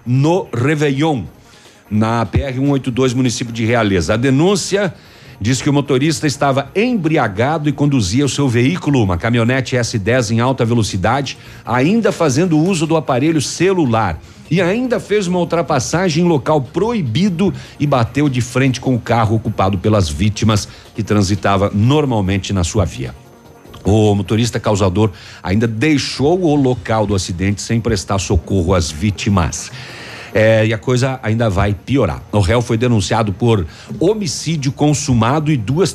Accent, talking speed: Brazilian, 145 wpm